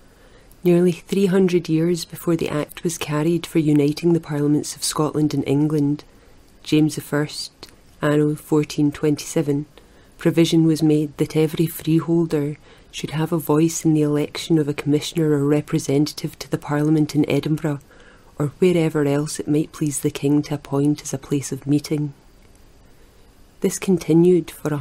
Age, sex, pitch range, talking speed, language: 30-49, female, 150-165 Hz, 150 wpm, English